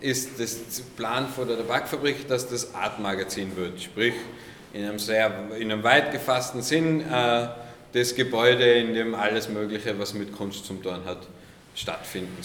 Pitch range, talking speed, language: 105-125 Hz, 160 wpm, German